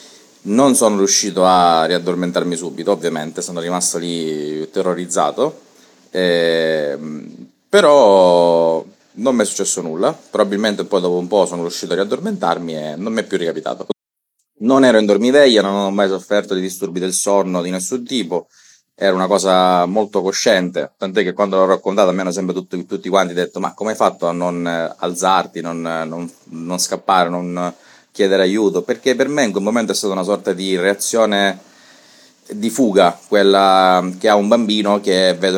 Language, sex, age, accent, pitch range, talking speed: Italian, male, 30-49, native, 90-100 Hz, 170 wpm